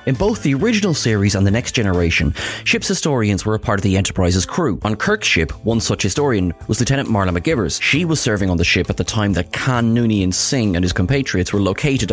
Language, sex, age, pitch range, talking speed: English, male, 30-49, 95-135 Hz, 230 wpm